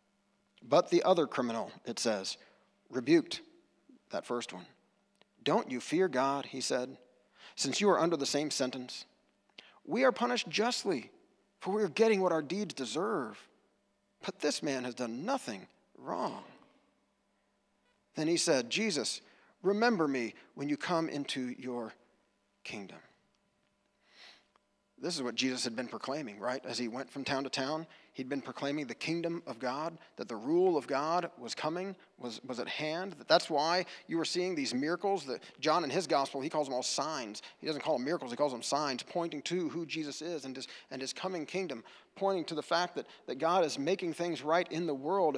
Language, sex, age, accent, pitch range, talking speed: English, male, 40-59, American, 135-195 Hz, 185 wpm